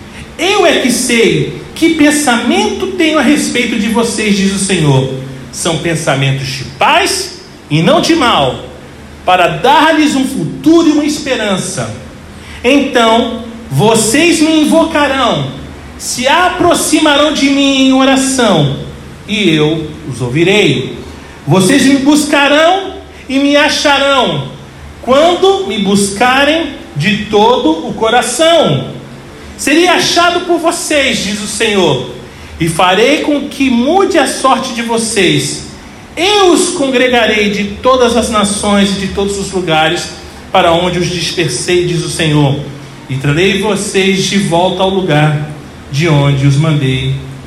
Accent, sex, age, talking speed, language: Brazilian, male, 40-59, 130 wpm, Portuguese